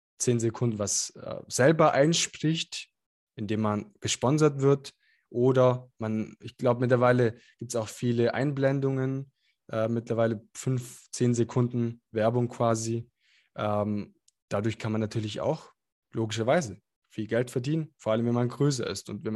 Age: 20-39